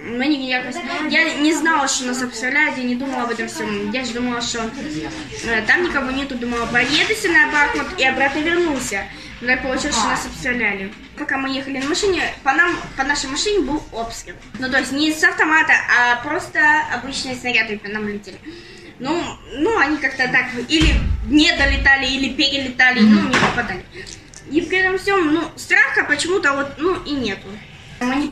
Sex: female